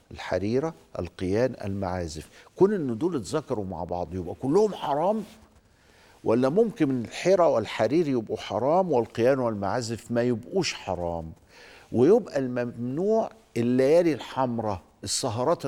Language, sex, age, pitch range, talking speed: Arabic, male, 50-69, 100-140 Hz, 110 wpm